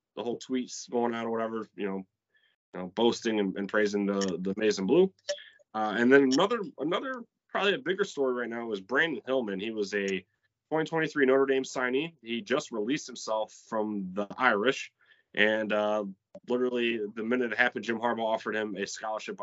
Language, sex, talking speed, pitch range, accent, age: English, male, 185 wpm, 100-125 Hz, American, 20-39